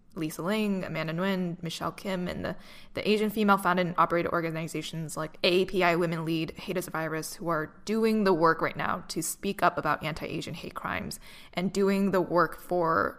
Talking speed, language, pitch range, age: 190 wpm, English, 170-205 Hz, 20-39